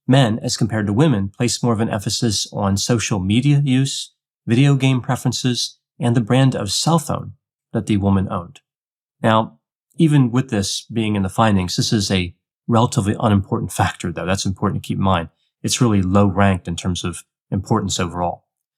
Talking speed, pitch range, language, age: 180 wpm, 100-130 Hz, English, 30-49